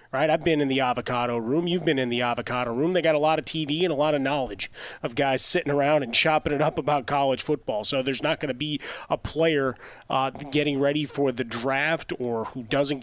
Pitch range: 125-150 Hz